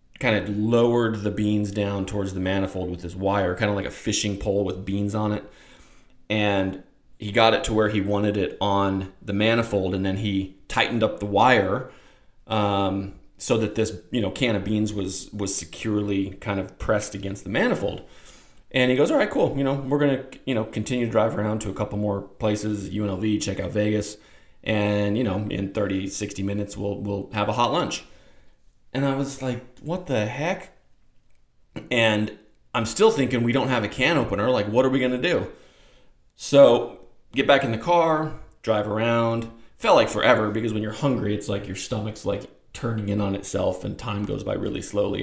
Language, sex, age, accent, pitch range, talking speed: English, male, 30-49, American, 100-115 Hz, 200 wpm